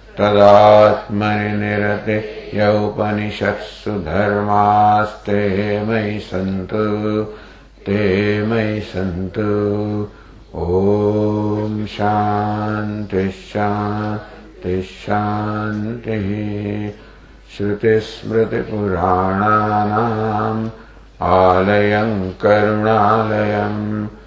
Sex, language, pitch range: male, English, 105-110 Hz